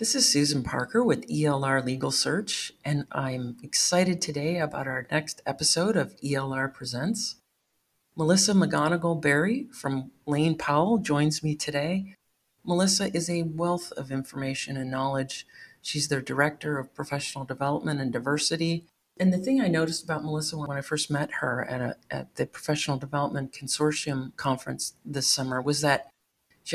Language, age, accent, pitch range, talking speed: English, 40-59, American, 135-165 Hz, 155 wpm